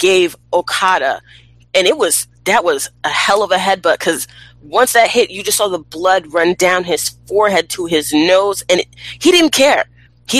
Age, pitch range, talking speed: 20-39, 130-195 Hz, 190 wpm